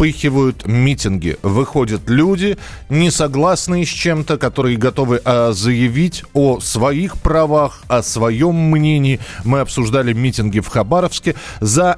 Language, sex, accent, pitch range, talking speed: Russian, male, native, 110-145 Hz, 110 wpm